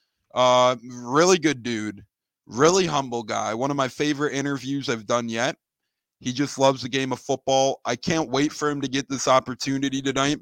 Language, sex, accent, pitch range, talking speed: English, male, American, 120-135 Hz, 185 wpm